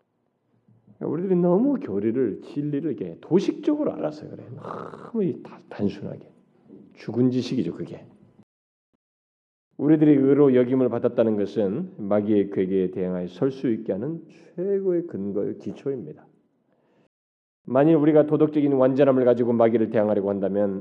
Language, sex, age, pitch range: Korean, male, 40-59, 125-190 Hz